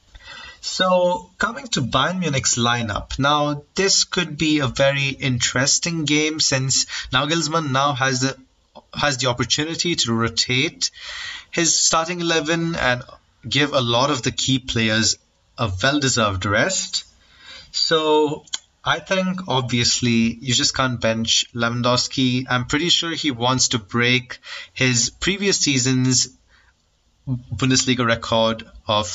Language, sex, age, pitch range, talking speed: English, male, 30-49, 120-145 Hz, 125 wpm